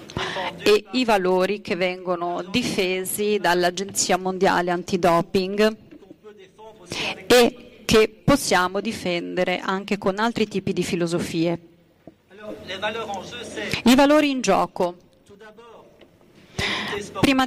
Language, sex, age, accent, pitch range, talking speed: Italian, female, 40-59, native, 180-220 Hz, 80 wpm